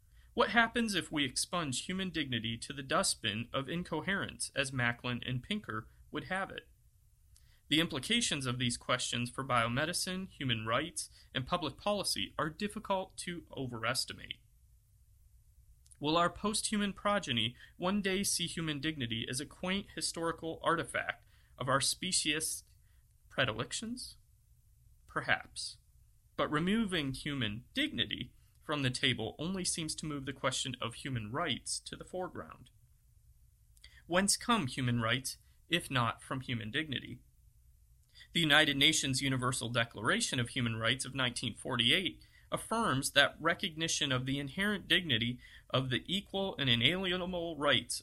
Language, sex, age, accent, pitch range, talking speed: English, male, 30-49, American, 120-175 Hz, 130 wpm